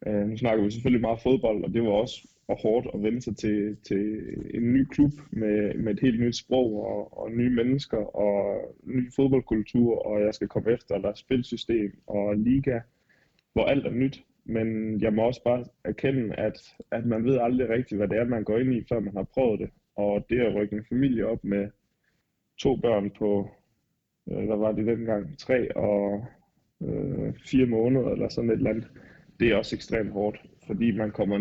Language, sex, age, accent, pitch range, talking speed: Danish, male, 20-39, native, 105-120 Hz, 200 wpm